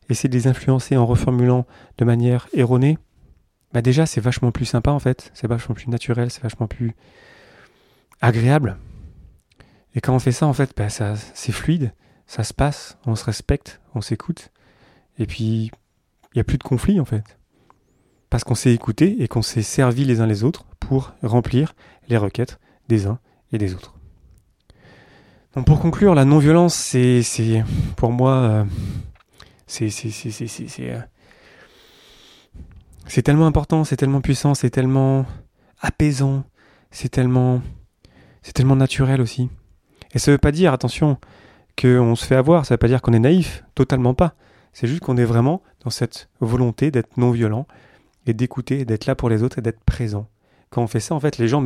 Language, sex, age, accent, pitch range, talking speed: French, male, 30-49, French, 110-135 Hz, 180 wpm